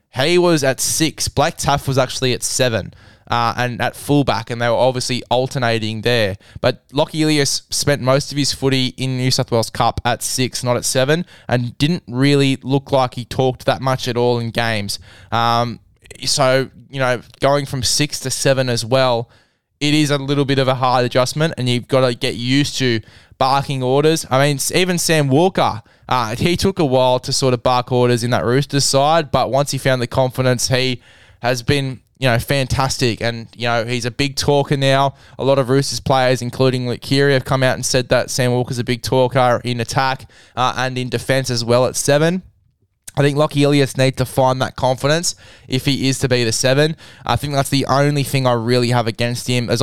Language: English